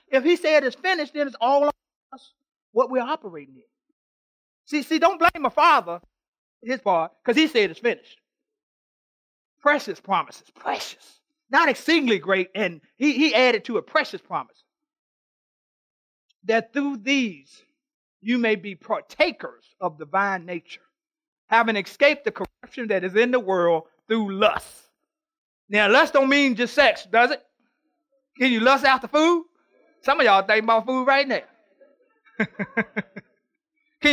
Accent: American